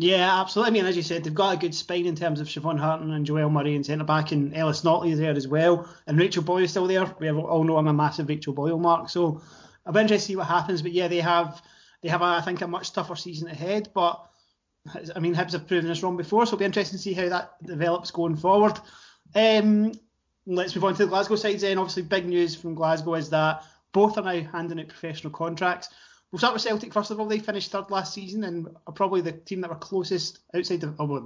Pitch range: 165-195 Hz